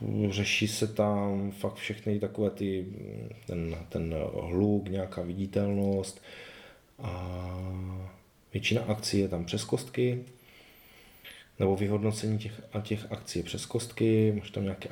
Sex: male